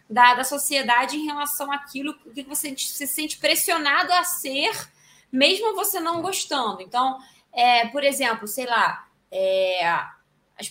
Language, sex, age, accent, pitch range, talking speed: Portuguese, female, 20-39, Brazilian, 245-315 Hz, 140 wpm